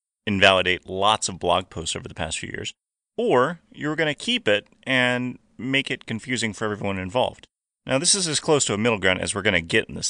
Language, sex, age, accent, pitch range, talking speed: English, male, 30-49, American, 100-165 Hz, 230 wpm